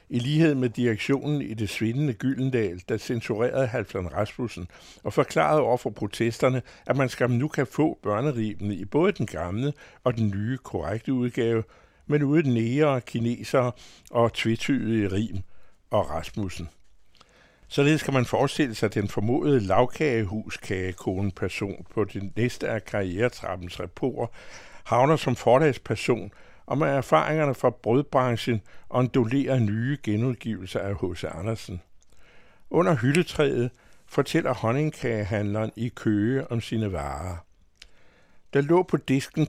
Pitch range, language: 105-135 Hz, Danish